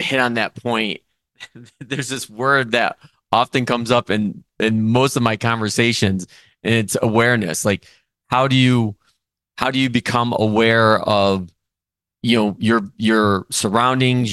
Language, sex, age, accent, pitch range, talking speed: English, male, 30-49, American, 105-120 Hz, 145 wpm